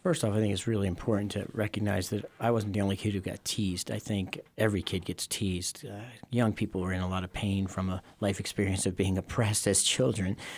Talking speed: 240 wpm